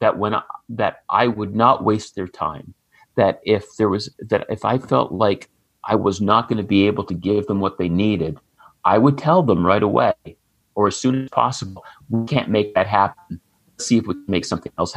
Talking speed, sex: 225 wpm, male